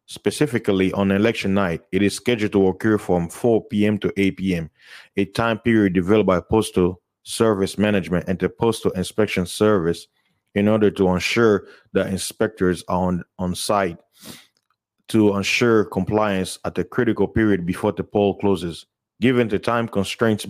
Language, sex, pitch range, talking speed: English, male, 95-110 Hz, 155 wpm